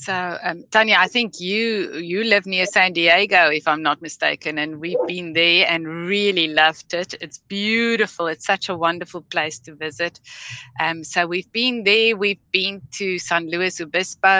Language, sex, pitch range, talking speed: English, female, 160-200 Hz, 180 wpm